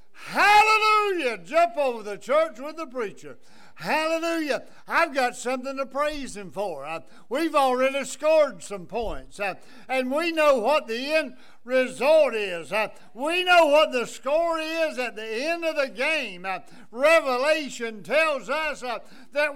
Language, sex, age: English, male, 60-79